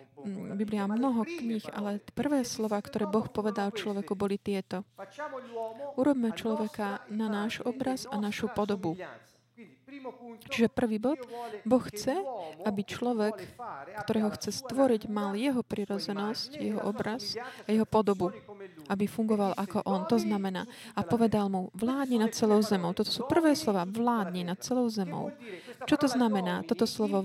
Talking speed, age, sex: 145 wpm, 20-39, female